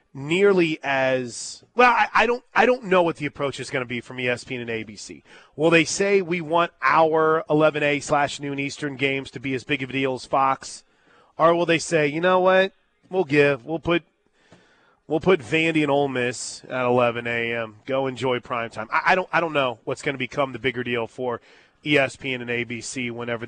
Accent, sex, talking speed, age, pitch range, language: American, male, 210 wpm, 30-49, 130-175 Hz, English